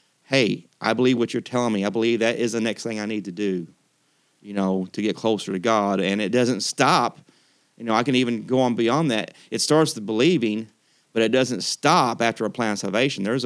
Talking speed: 230 wpm